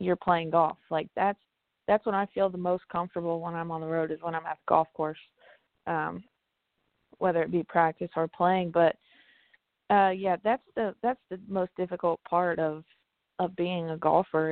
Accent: American